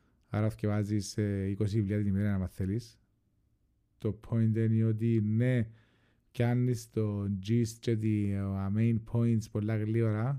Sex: male